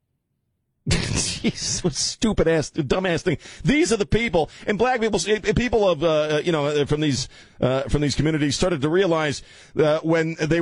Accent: American